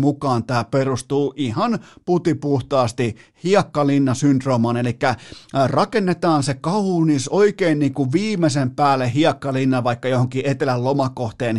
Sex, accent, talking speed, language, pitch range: male, native, 105 wpm, Finnish, 125-160 Hz